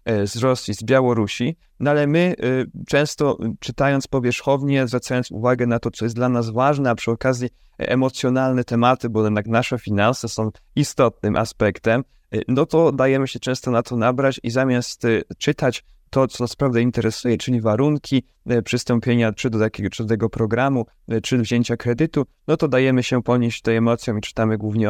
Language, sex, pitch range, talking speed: Polish, male, 110-130 Hz, 170 wpm